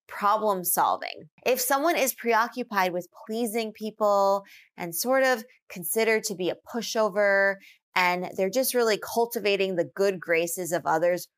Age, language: 20-39, English